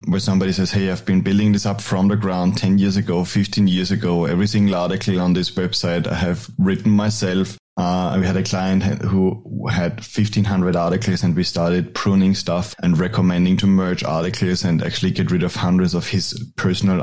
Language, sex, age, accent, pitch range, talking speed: English, male, 30-49, German, 90-105 Hz, 200 wpm